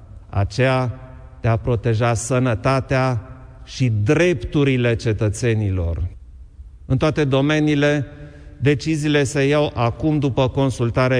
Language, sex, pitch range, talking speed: Romanian, male, 115-140 Hz, 85 wpm